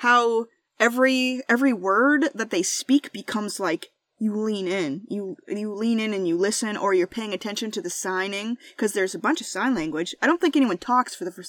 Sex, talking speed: female, 215 wpm